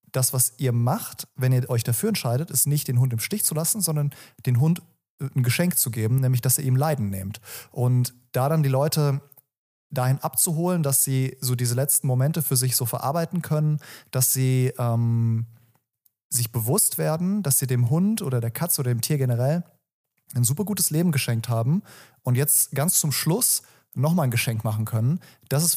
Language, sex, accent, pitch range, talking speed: German, male, German, 125-150 Hz, 195 wpm